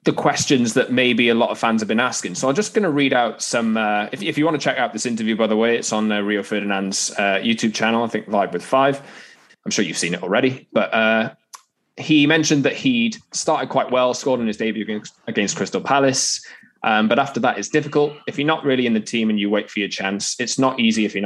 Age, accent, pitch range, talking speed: 20-39, British, 105-135 Hz, 255 wpm